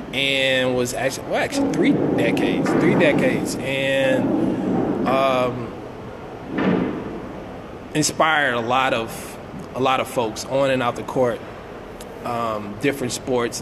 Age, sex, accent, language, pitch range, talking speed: 20-39, male, American, English, 115-130 Hz, 120 wpm